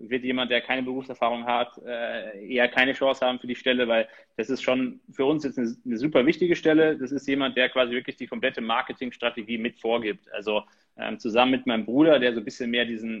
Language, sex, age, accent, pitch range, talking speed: German, male, 20-39, German, 115-130 Hz, 210 wpm